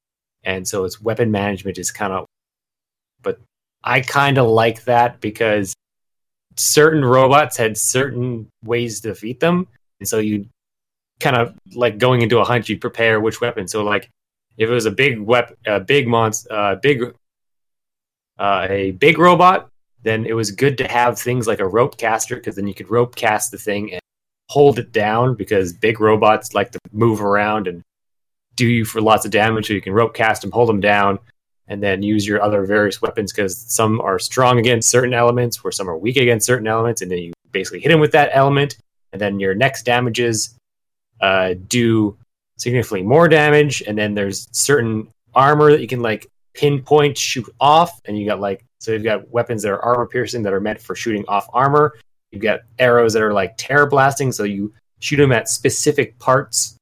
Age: 20-39